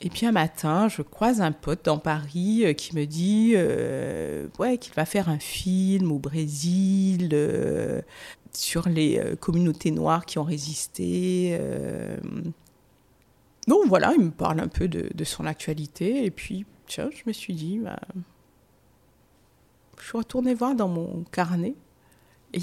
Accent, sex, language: French, female, French